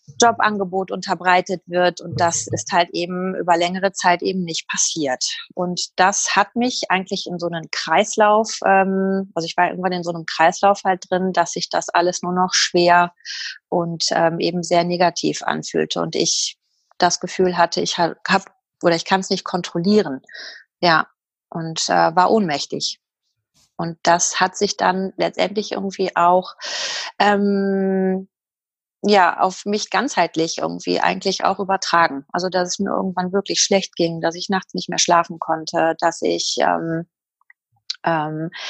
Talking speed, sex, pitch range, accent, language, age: 150 wpm, female, 170-195 Hz, German, German, 30-49